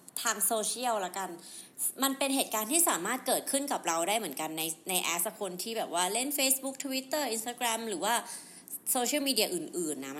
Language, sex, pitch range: Thai, female, 185-250 Hz